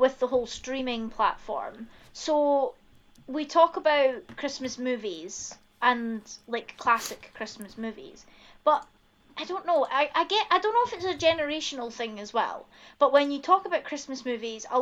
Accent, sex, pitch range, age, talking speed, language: British, female, 225-280 Hz, 20-39, 165 wpm, English